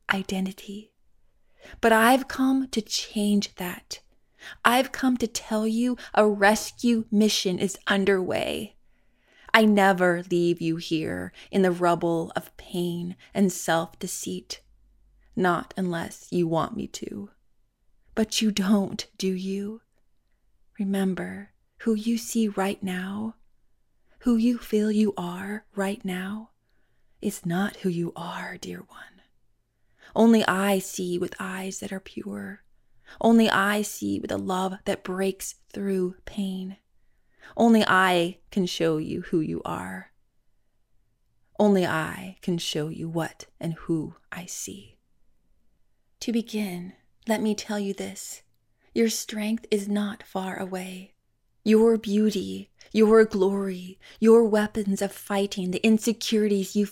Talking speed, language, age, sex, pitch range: 125 wpm, English, 20-39, female, 175-215 Hz